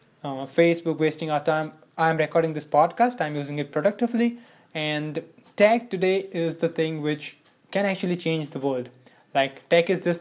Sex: male